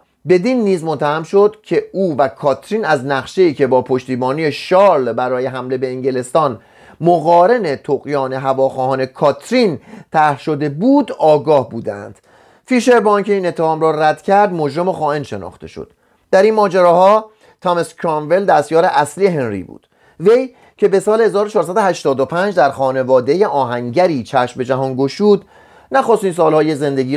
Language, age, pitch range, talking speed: Persian, 30-49, 130-180 Hz, 135 wpm